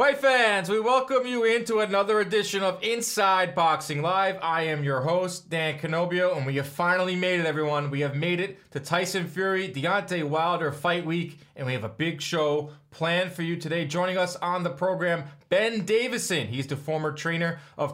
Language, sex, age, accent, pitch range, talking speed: English, male, 20-39, American, 145-185 Hz, 195 wpm